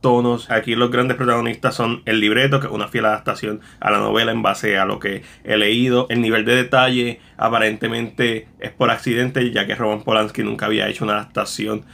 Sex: male